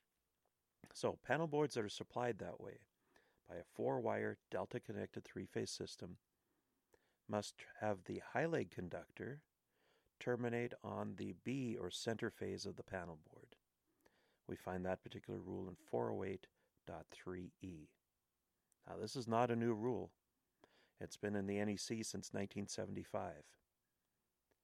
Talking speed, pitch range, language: 125 wpm, 90-120 Hz, English